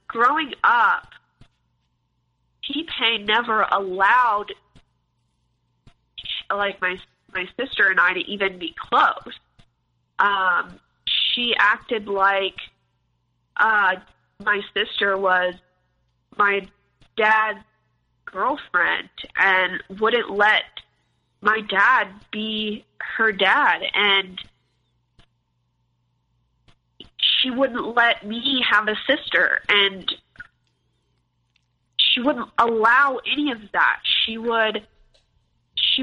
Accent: American